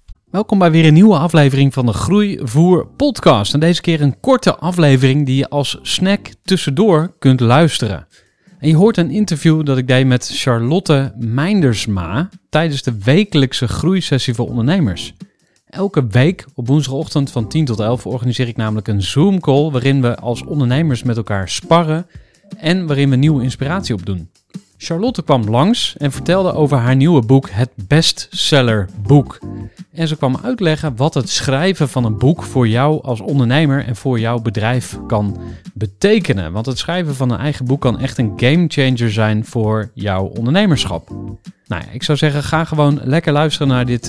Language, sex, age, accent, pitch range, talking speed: Dutch, male, 30-49, Dutch, 120-165 Hz, 170 wpm